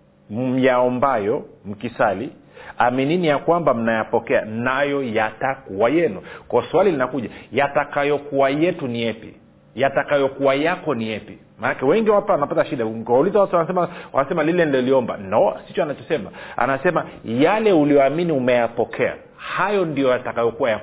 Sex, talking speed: male, 120 wpm